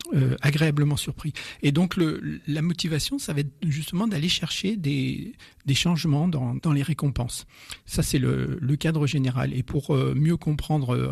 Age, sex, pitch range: 50-69, male, 130-160 Hz